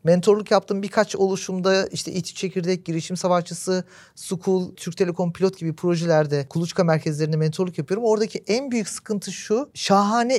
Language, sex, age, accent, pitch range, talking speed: Turkish, male, 50-69, native, 175-215 Hz, 145 wpm